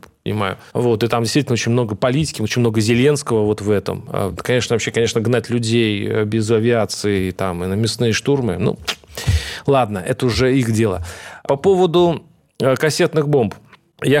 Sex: male